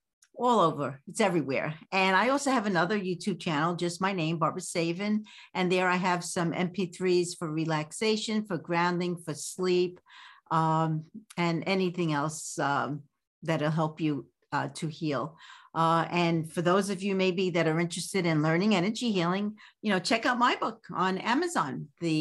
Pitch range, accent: 165-200 Hz, American